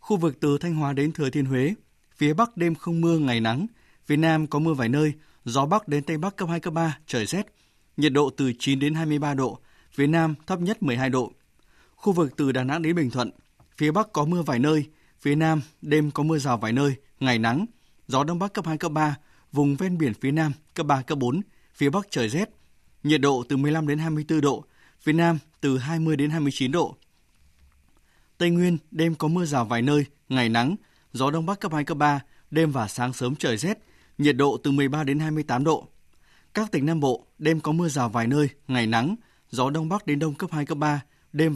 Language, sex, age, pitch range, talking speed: Vietnamese, male, 20-39, 130-160 Hz, 225 wpm